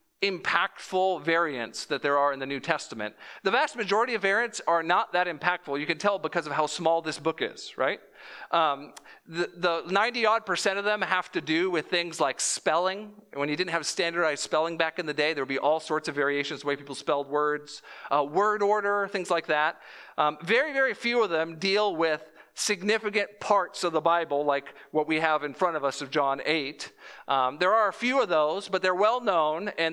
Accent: American